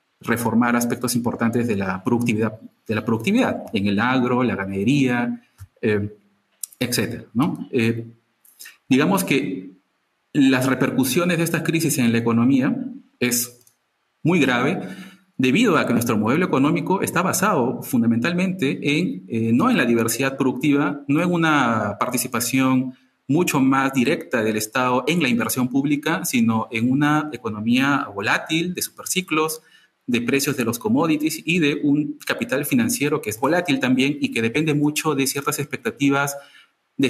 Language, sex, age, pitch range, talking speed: Portuguese, male, 40-59, 120-155 Hz, 145 wpm